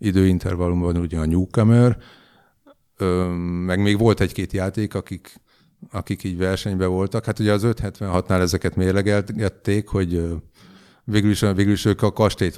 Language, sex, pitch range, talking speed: Hungarian, male, 90-105 Hz, 130 wpm